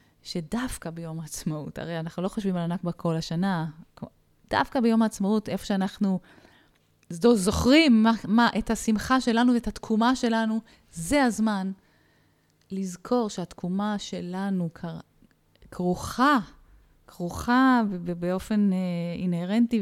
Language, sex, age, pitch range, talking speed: Hebrew, female, 20-39, 170-240 Hz, 110 wpm